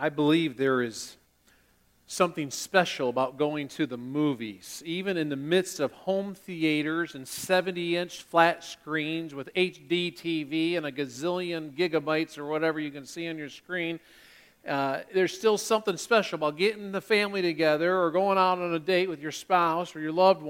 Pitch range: 155-200 Hz